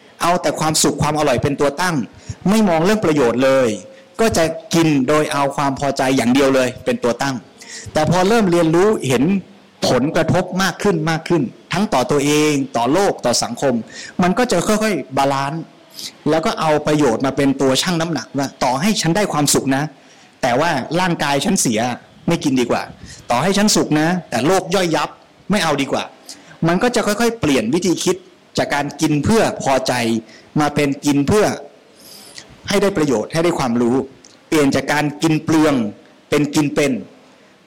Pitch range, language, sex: 140-185 Hz, Thai, male